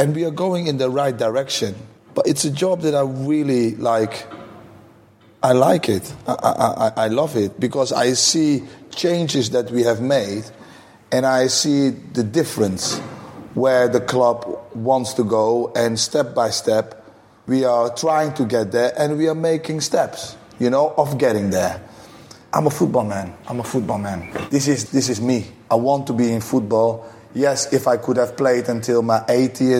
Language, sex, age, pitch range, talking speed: English, male, 30-49, 120-140 Hz, 185 wpm